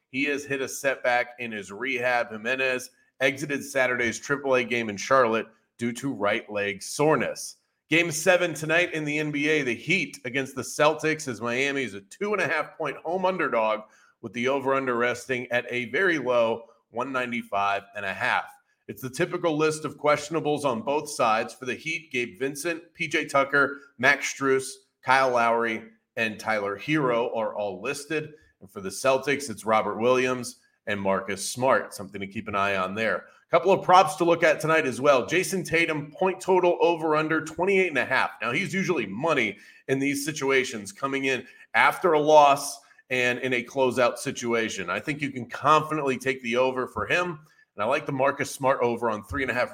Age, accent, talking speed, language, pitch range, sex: 30-49, American, 190 wpm, English, 120-150 Hz, male